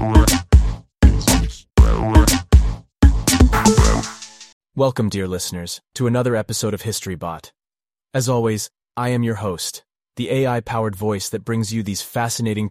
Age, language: 30-49, English